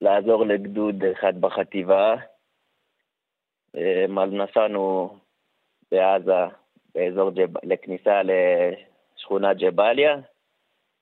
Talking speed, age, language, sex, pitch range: 55 wpm, 30-49, Hebrew, male, 95-110 Hz